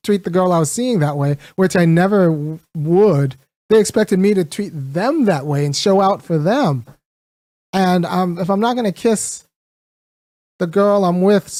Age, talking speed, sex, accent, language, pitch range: 30-49, 190 wpm, male, American, English, 150-200 Hz